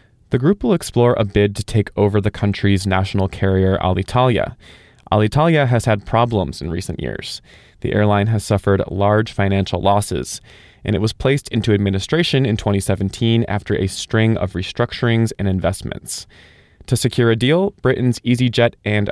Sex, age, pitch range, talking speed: male, 20-39, 100-120 Hz, 155 wpm